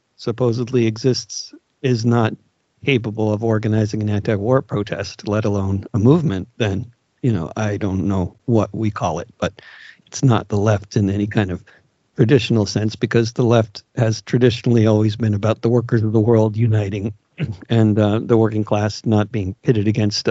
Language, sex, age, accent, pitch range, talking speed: English, male, 50-69, American, 100-120 Hz, 170 wpm